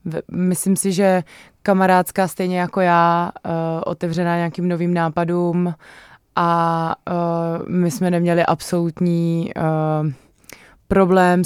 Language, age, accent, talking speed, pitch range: Czech, 20-39, native, 90 wpm, 160-185 Hz